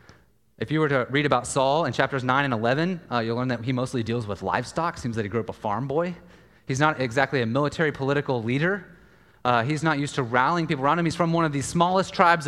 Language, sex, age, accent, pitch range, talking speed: English, male, 30-49, American, 110-170 Hz, 255 wpm